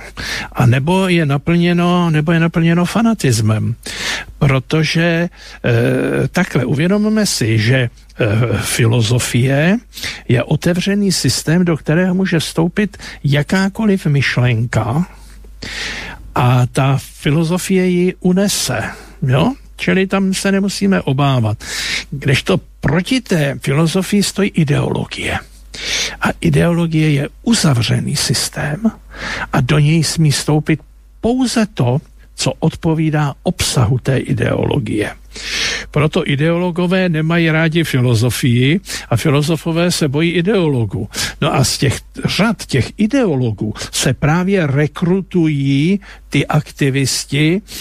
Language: Slovak